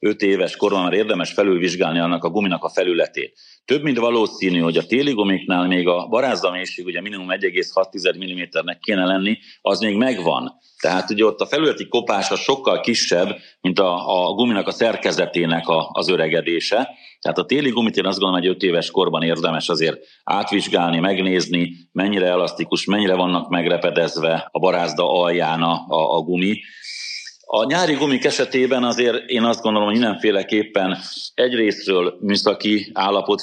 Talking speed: 155 wpm